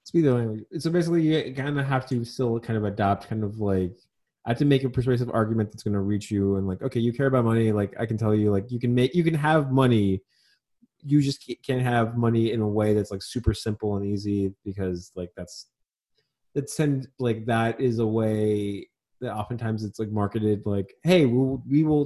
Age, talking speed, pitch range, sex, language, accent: 20-39, 210 wpm, 110-135 Hz, male, English, American